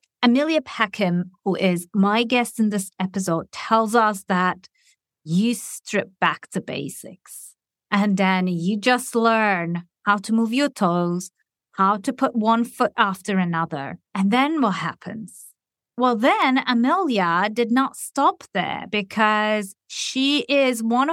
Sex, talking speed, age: female, 140 wpm, 30-49